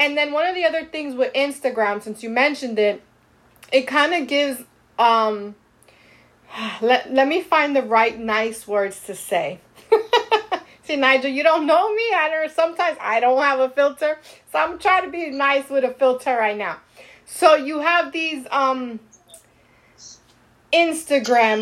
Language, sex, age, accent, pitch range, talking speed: English, female, 30-49, American, 245-315 Hz, 160 wpm